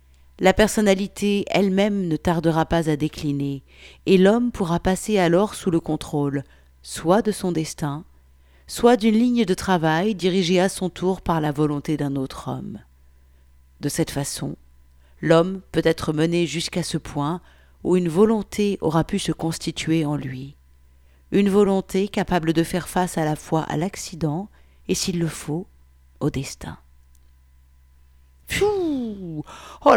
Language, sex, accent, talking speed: French, female, French, 145 wpm